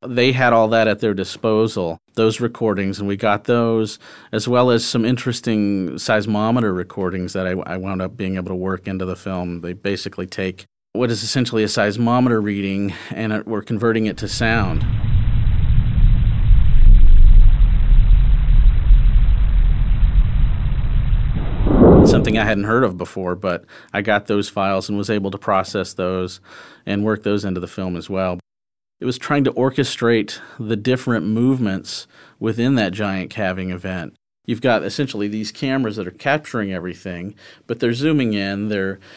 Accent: American